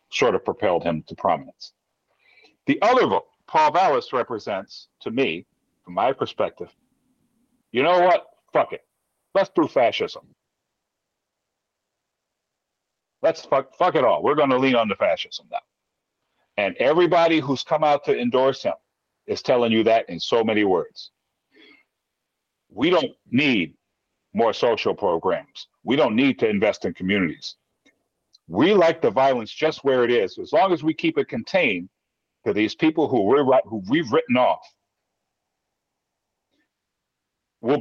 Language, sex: English, male